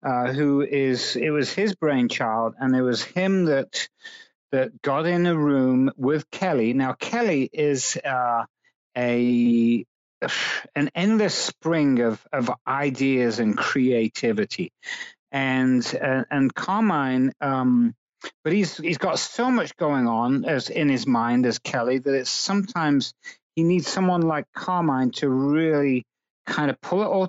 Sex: male